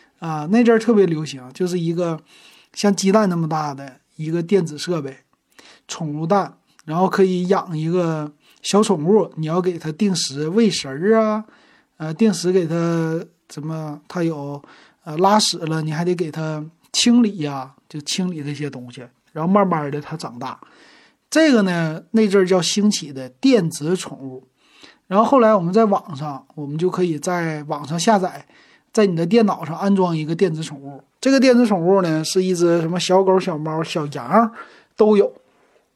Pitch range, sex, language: 150-200 Hz, male, Chinese